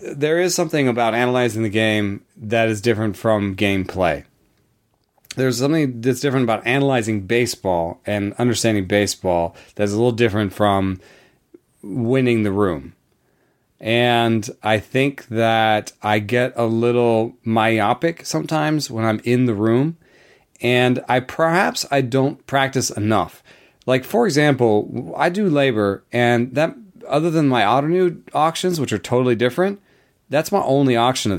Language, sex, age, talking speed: English, male, 30-49, 140 wpm